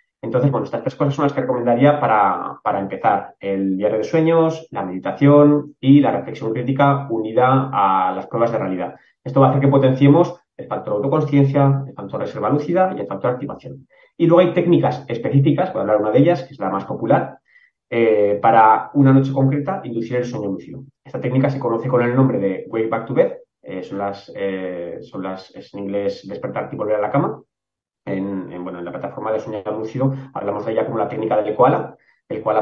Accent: Spanish